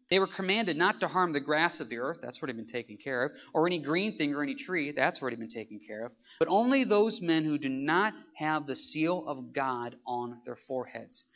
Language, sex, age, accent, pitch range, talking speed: English, male, 30-49, American, 130-205 Hz, 250 wpm